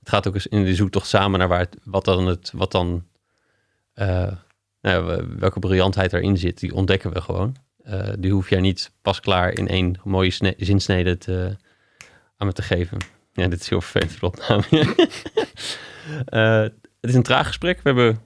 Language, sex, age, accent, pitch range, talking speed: Dutch, male, 30-49, Dutch, 95-115 Hz, 185 wpm